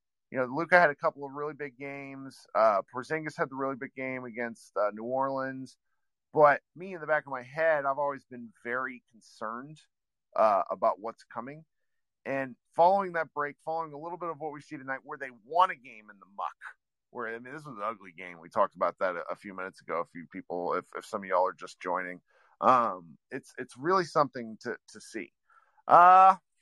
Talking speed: 215 wpm